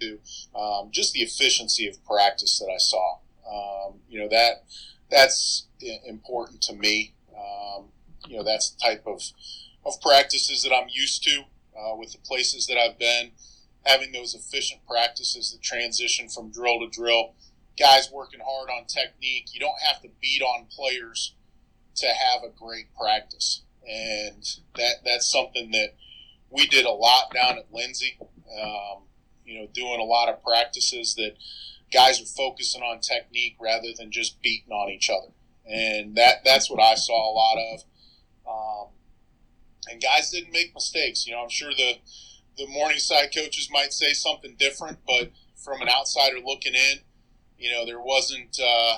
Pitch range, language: 110-135 Hz, English